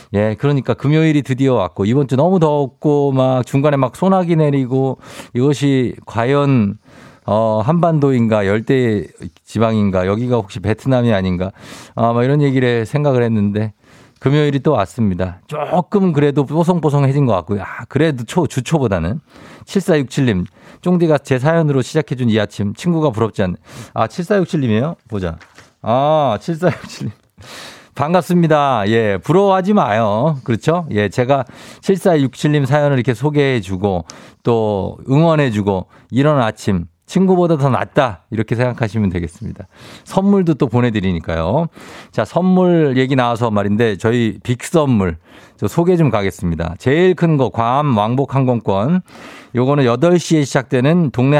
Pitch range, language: 110-150 Hz, Korean